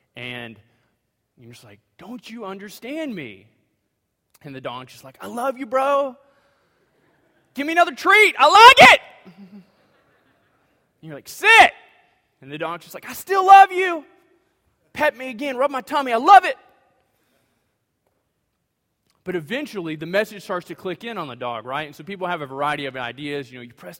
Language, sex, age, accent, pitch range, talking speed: English, male, 20-39, American, 125-195 Hz, 175 wpm